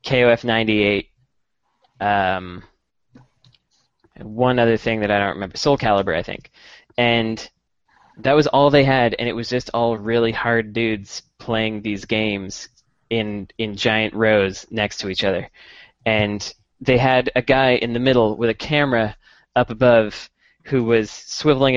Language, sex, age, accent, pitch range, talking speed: English, male, 20-39, American, 105-125 Hz, 155 wpm